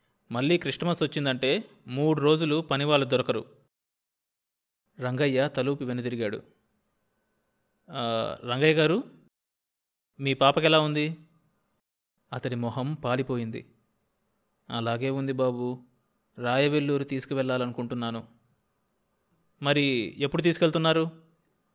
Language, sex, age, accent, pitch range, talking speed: Telugu, male, 20-39, native, 125-155 Hz, 70 wpm